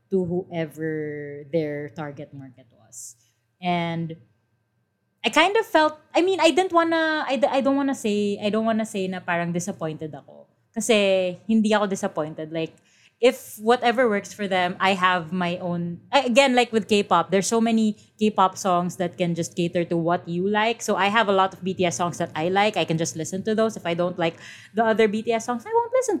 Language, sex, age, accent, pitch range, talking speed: English, female, 20-39, Filipino, 165-240 Hz, 195 wpm